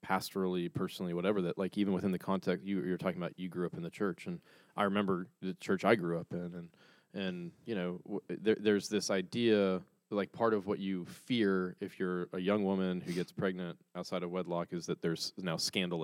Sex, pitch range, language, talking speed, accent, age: male, 90-100 Hz, English, 220 wpm, American, 20-39